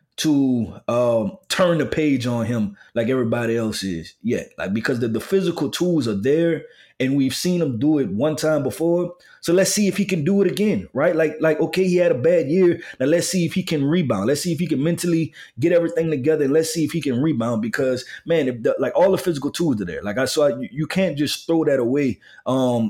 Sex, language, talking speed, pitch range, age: male, English, 240 wpm, 130-165 Hz, 20-39